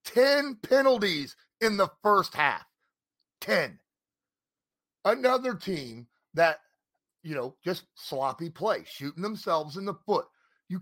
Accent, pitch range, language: American, 130-190 Hz, English